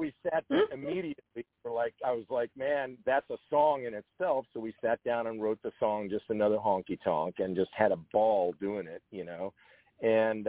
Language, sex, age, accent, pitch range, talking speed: English, male, 50-69, American, 100-120 Hz, 210 wpm